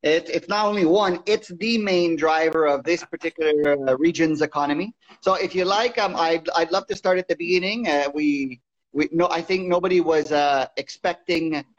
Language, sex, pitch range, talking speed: English, male, 155-185 Hz, 195 wpm